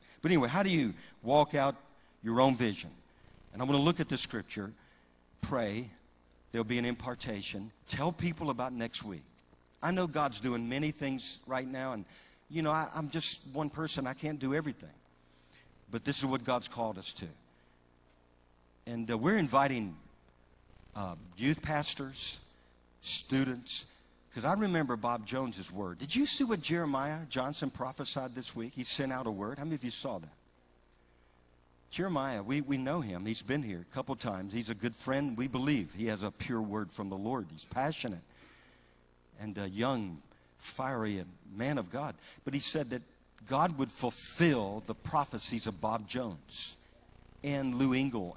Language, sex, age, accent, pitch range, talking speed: English, male, 50-69, American, 85-135 Hz, 170 wpm